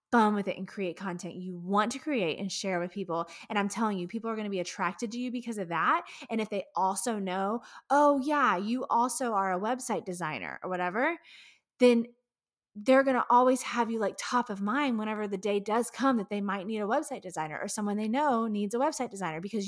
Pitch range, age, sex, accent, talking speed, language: 195-250 Hz, 20-39, female, American, 230 wpm, English